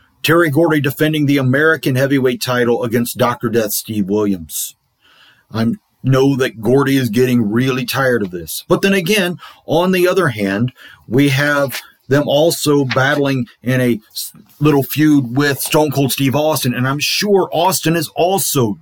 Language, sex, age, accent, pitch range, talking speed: English, male, 40-59, American, 125-170 Hz, 155 wpm